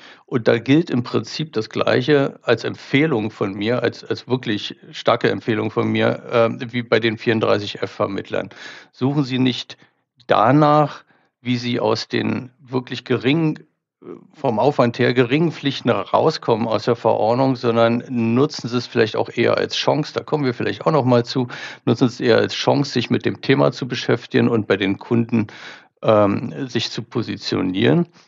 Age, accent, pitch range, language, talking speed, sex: 50-69, German, 115-135 Hz, German, 170 wpm, male